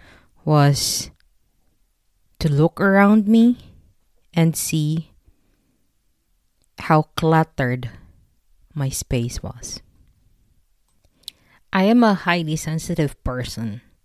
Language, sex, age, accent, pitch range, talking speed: English, female, 20-39, Filipino, 135-175 Hz, 75 wpm